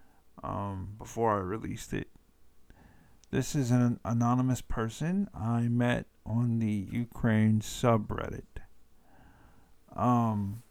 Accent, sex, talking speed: American, male, 95 wpm